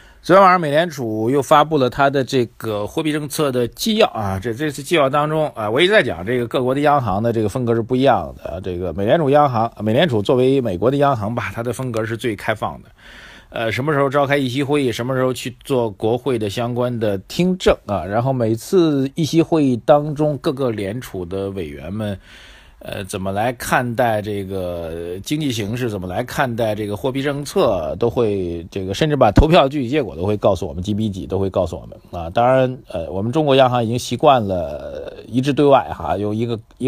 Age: 50-69